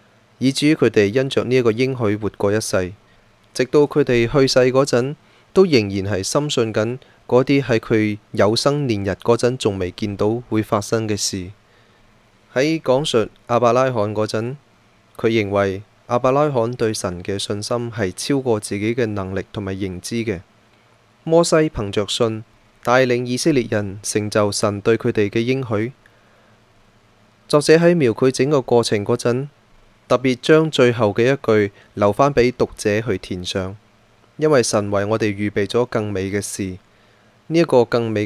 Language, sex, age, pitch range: Chinese, male, 20-39, 105-125 Hz